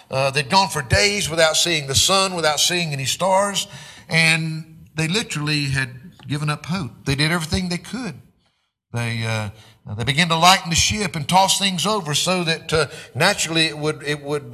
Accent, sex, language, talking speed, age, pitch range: American, male, English, 185 wpm, 50-69, 125-175 Hz